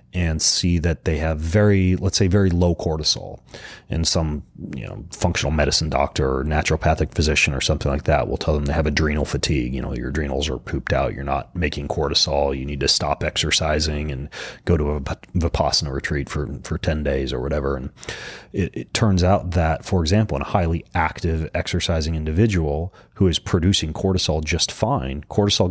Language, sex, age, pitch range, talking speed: English, male, 30-49, 75-95 Hz, 190 wpm